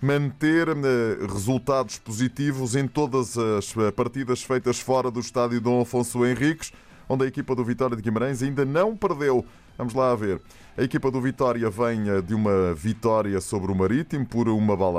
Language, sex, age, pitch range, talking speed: Portuguese, male, 20-39, 110-130 Hz, 165 wpm